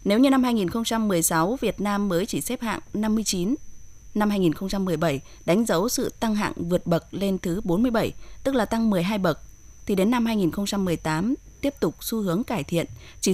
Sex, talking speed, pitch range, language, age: female, 175 wpm, 170-225 Hz, Vietnamese, 20-39